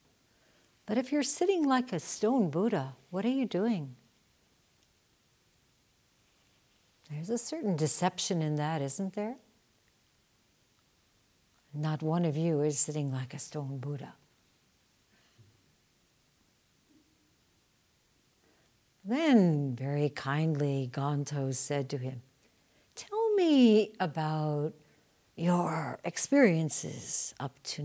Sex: female